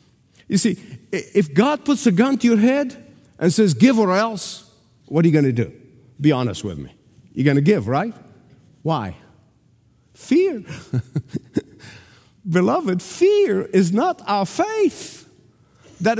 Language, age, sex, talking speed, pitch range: English, 50-69, male, 145 wpm, 145-240 Hz